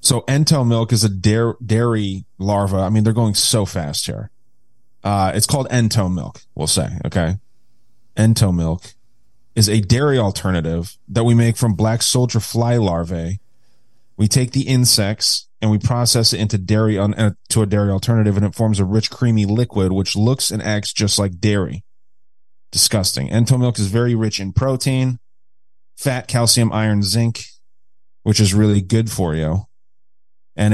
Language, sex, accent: English, male, American